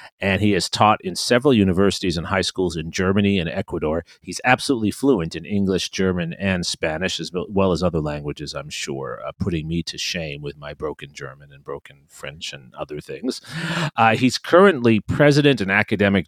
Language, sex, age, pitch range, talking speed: English, male, 40-59, 85-110 Hz, 185 wpm